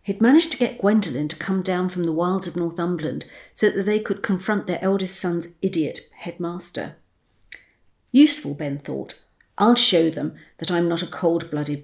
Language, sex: English, female